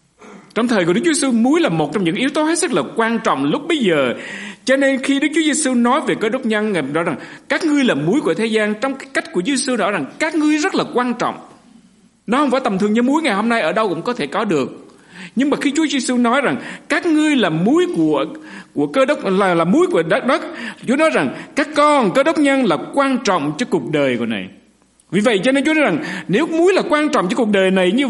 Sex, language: male, Vietnamese